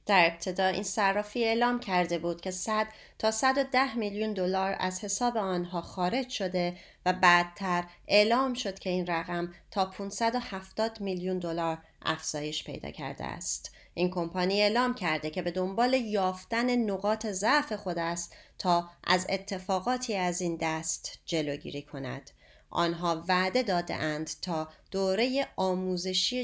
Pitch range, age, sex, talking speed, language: 170-215 Hz, 30-49, female, 135 wpm, Persian